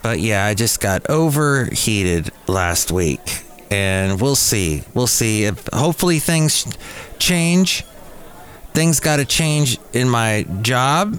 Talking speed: 130 wpm